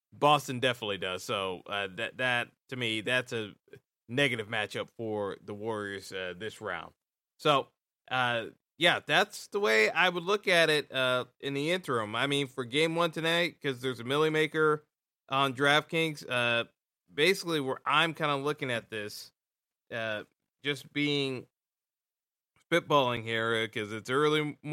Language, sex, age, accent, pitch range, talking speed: English, male, 20-39, American, 120-150 Hz, 155 wpm